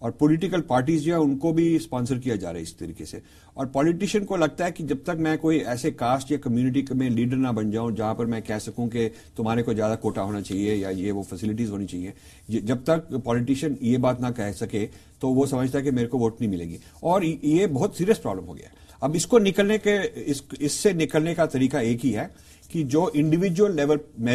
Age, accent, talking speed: 50-69, Indian, 190 wpm